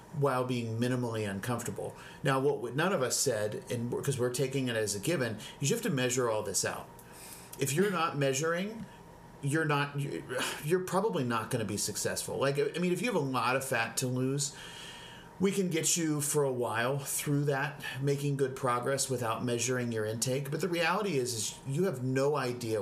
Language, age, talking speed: English, 40-59, 200 wpm